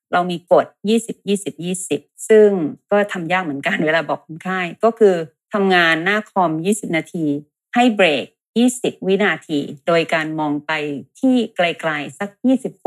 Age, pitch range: 30-49, 160-200 Hz